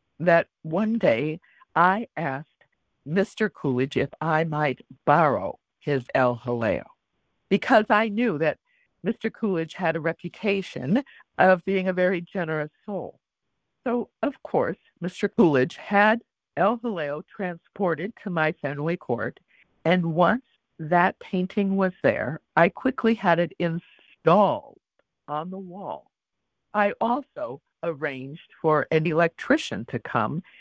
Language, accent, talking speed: English, American, 125 wpm